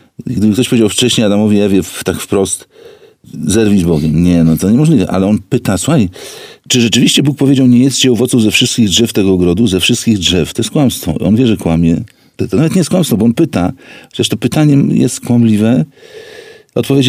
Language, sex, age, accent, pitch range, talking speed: Polish, male, 50-69, native, 100-135 Hz, 195 wpm